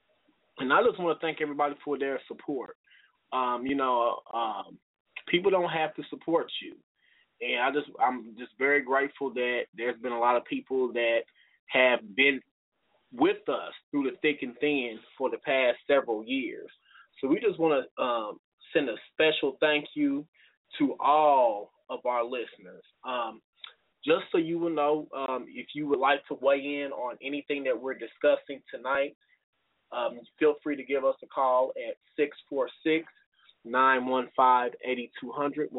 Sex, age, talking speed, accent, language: male, 20-39, 160 wpm, American, English